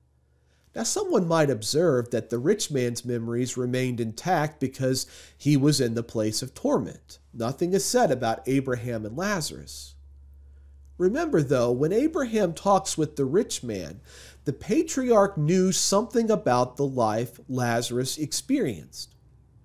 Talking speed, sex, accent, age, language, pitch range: 135 wpm, male, American, 40-59, English, 120-160 Hz